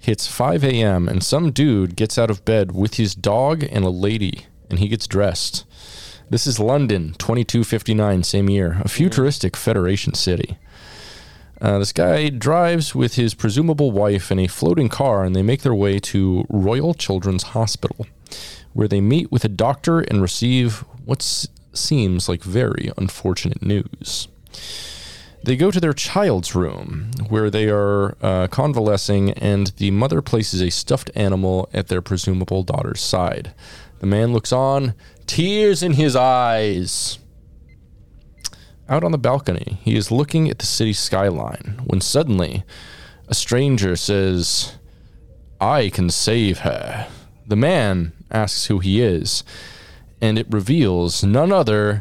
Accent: American